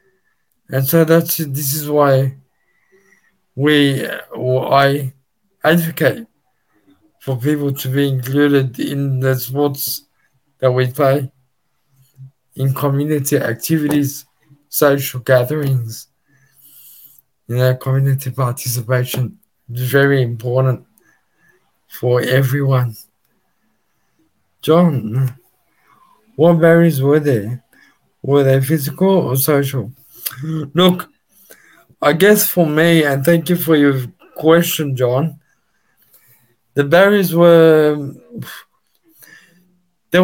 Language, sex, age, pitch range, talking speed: English, male, 50-69, 135-165 Hz, 90 wpm